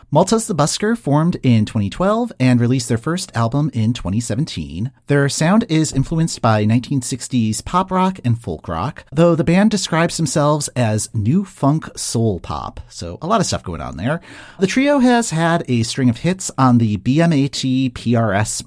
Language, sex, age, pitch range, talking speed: English, male, 40-59, 115-165 Hz, 175 wpm